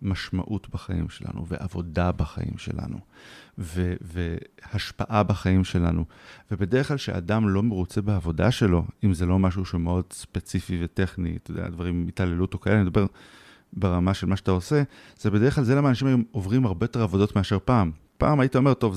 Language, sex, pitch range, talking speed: Hebrew, male, 95-120 Hz, 170 wpm